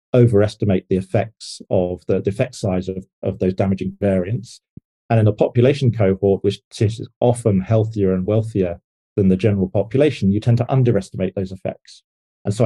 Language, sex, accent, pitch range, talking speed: English, male, British, 95-115 Hz, 165 wpm